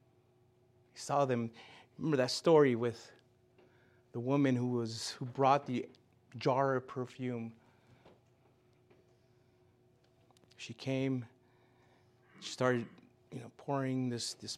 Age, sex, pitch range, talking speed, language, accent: 30-49, male, 120-135 Hz, 105 wpm, English, American